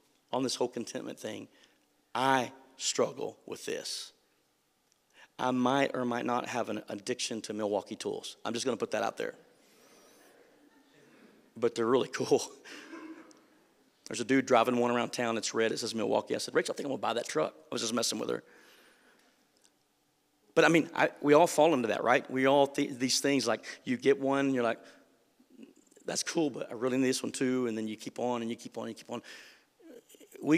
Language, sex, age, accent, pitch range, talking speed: English, male, 40-59, American, 120-140 Hz, 200 wpm